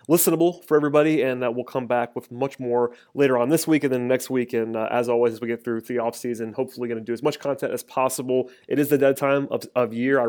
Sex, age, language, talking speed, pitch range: male, 30-49, English, 275 wpm, 115-135 Hz